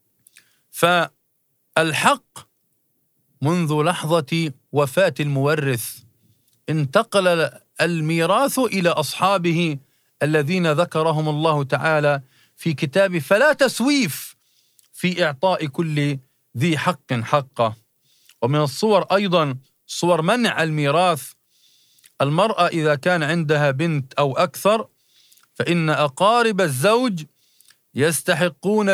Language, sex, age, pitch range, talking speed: Arabic, male, 50-69, 140-190 Hz, 85 wpm